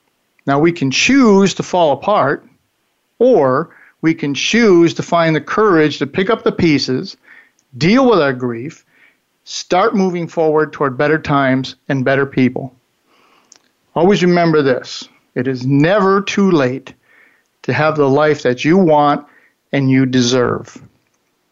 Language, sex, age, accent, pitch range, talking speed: English, male, 50-69, American, 140-175 Hz, 140 wpm